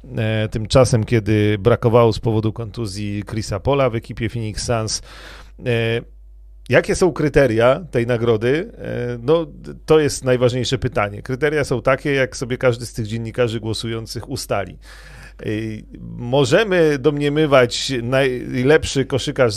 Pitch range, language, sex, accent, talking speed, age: 105-130 Hz, Polish, male, native, 115 wpm, 40-59